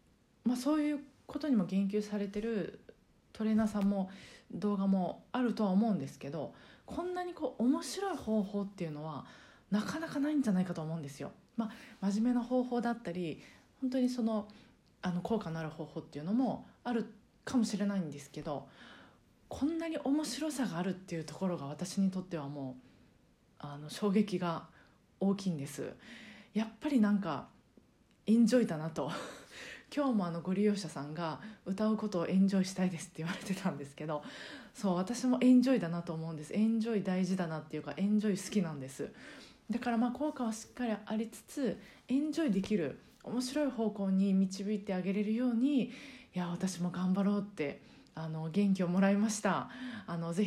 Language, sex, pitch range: Japanese, female, 180-240 Hz